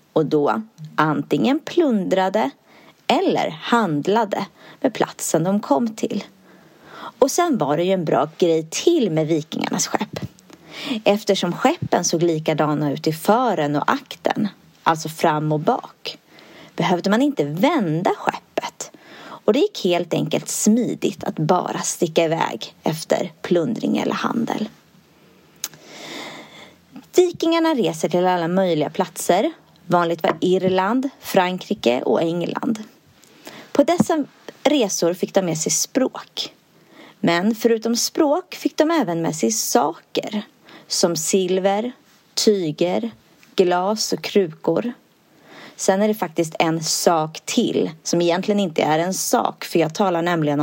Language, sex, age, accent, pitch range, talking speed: Swedish, female, 30-49, native, 165-235 Hz, 125 wpm